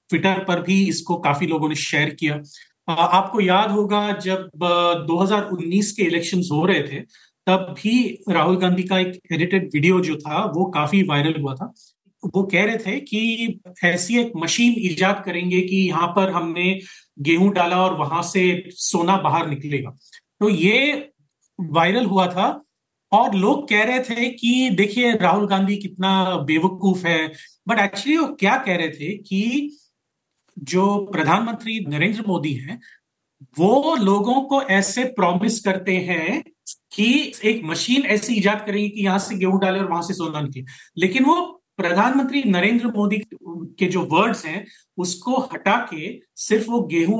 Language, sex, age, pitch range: Hindi, male, 40-59, 170-210 Hz